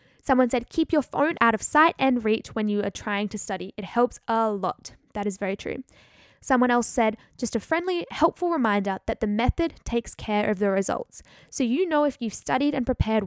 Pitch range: 215-275 Hz